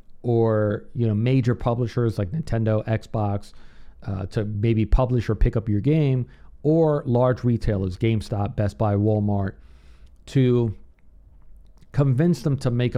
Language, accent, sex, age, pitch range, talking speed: English, American, male, 40-59, 105-130 Hz, 135 wpm